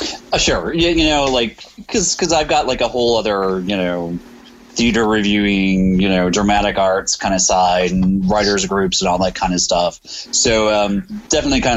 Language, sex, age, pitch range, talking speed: English, male, 30-49, 90-120 Hz, 195 wpm